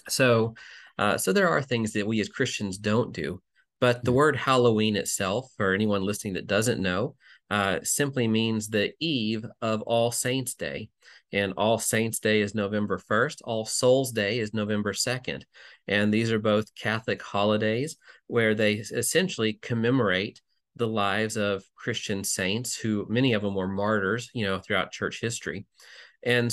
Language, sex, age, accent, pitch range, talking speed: English, male, 40-59, American, 105-120 Hz, 165 wpm